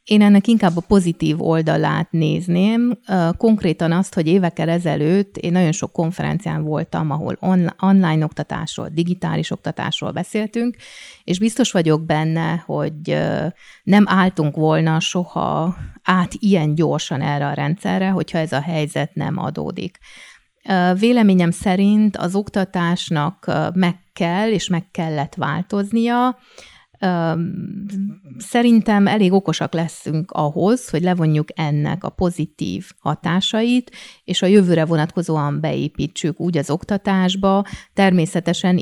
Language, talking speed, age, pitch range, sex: Hungarian, 115 wpm, 30-49, 160-190 Hz, female